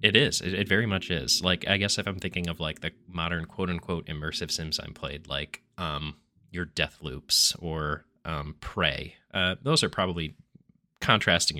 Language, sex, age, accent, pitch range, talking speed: English, male, 20-39, American, 75-90 Hz, 185 wpm